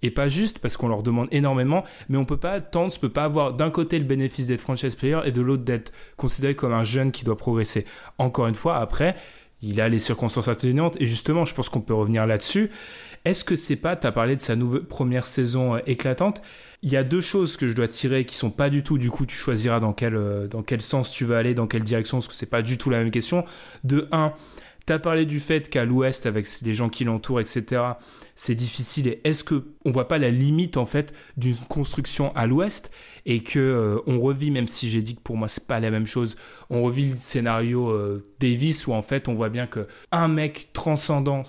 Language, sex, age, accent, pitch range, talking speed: French, male, 20-39, French, 120-145 Hz, 245 wpm